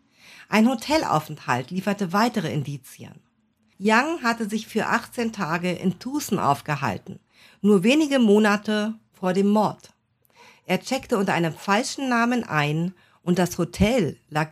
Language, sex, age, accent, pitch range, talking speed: German, female, 50-69, German, 160-225 Hz, 130 wpm